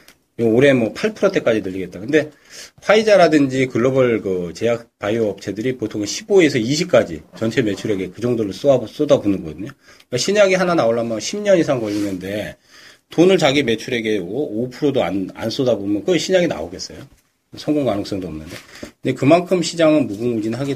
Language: Korean